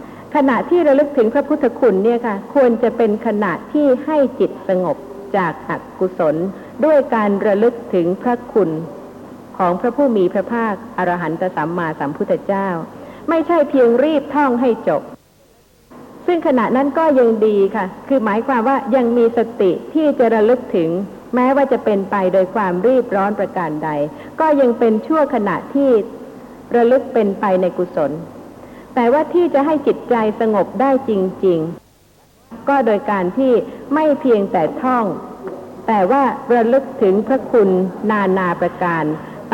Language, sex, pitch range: Thai, female, 195-260 Hz